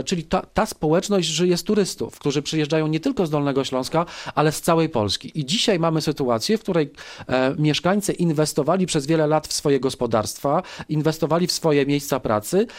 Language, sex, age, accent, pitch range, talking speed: Polish, male, 40-59, native, 140-165 Hz, 175 wpm